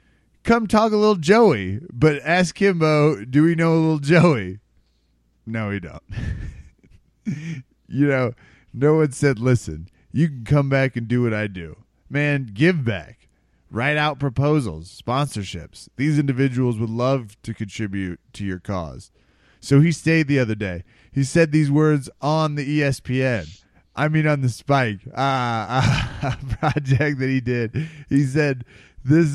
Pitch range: 110-150 Hz